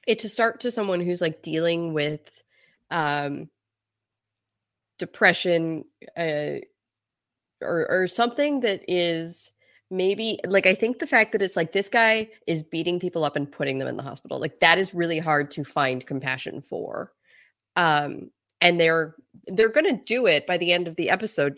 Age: 20-39